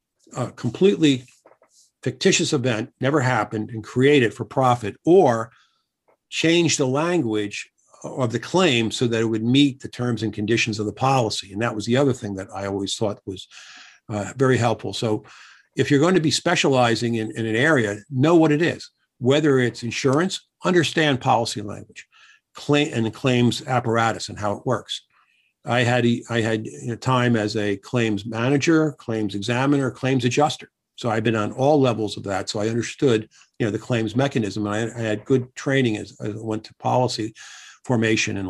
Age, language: 50-69, English